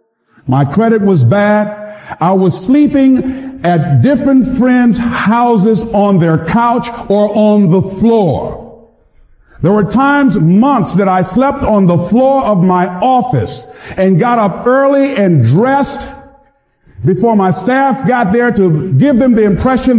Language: English